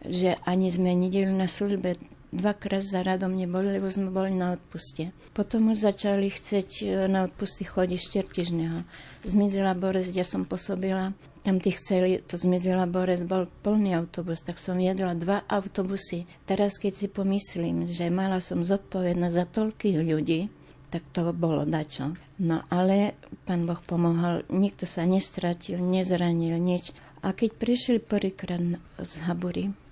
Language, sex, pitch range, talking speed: Slovak, female, 175-200 Hz, 145 wpm